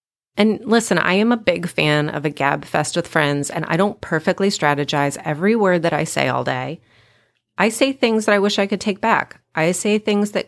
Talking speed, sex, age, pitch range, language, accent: 225 wpm, female, 30-49, 155-205 Hz, English, American